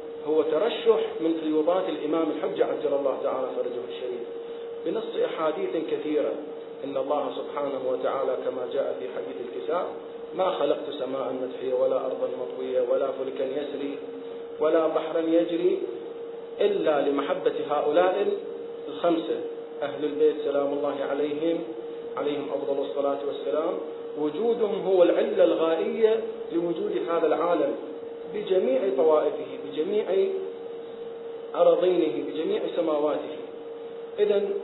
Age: 40-59